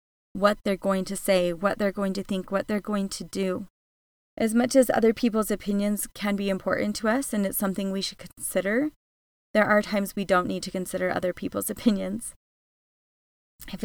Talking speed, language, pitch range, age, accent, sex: 190 wpm, English, 190-220 Hz, 30-49, American, female